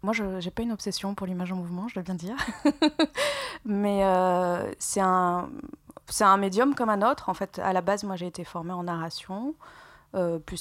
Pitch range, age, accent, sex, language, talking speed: 175-215 Hz, 20-39, French, female, French, 210 wpm